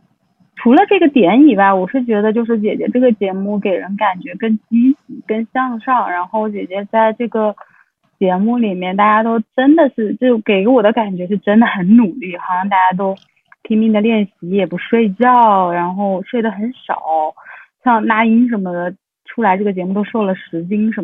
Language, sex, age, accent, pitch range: Chinese, female, 20-39, native, 190-240 Hz